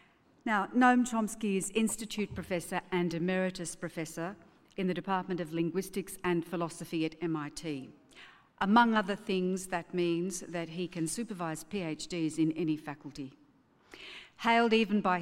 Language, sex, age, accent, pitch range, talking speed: English, female, 50-69, Australian, 160-200 Hz, 135 wpm